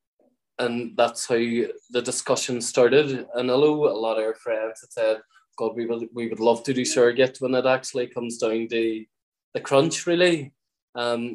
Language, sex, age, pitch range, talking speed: English, male, 20-39, 115-135 Hz, 180 wpm